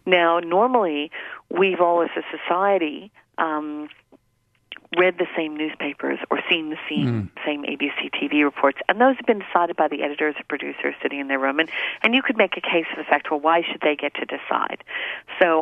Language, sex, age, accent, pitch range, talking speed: English, female, 40-59, American, 145-195 Hz, 200 wpm